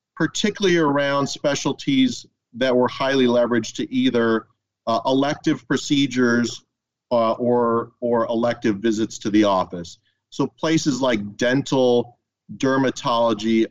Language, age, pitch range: English, 40-59, 110-140 Hz